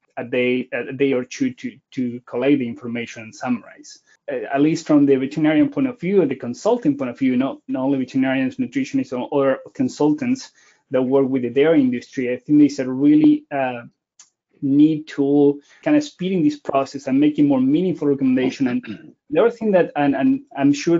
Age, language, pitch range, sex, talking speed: 20-39, English, 130-155 Hz, male, 195 wpm